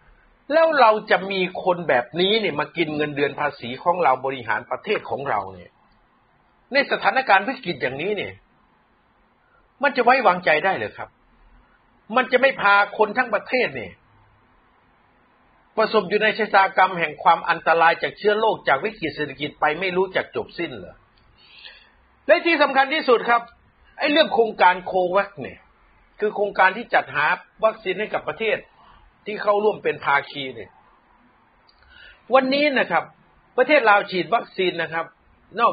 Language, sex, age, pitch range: Thai, male, 60-79, 180-255 Hz